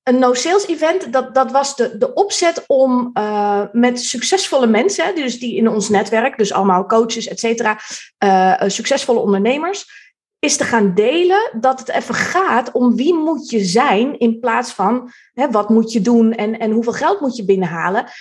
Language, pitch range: Dutch, 215-265 Hz